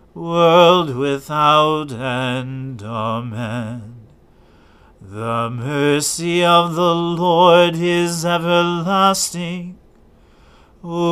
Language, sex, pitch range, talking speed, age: English, male, 130-175 Hz, 65 wpm, 40-59